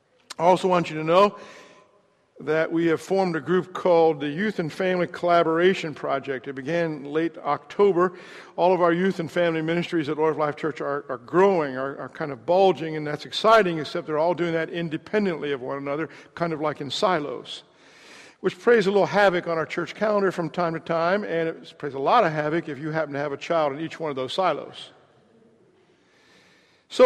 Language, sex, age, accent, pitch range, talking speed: English, male, 60-79, American, 155-185 Hz, 210 wpm